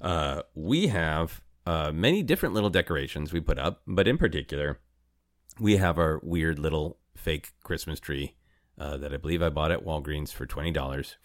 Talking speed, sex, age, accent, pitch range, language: 170 wpm, male, 30-49, American, 75-100 Hz, English